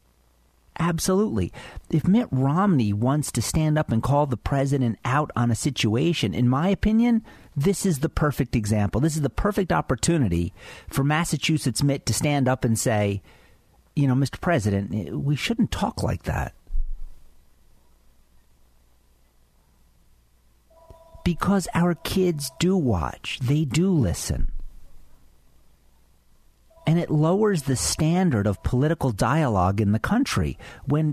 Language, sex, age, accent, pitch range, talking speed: English, male, 50-69, American, 100-160 Hz, 125 wpm